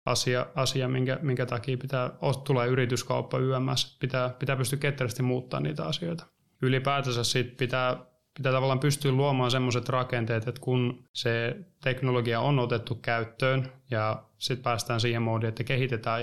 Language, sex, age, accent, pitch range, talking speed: Finnish, male, 20-39, native, 120-130 Hz, 145 wpm